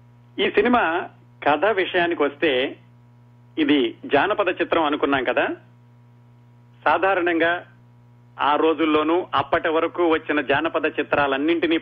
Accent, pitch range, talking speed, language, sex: native, 120-155 Hz, 90 wpm, Telugu, male